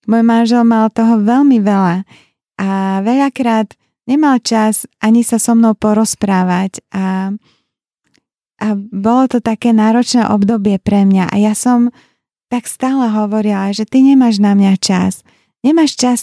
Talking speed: 140 wpm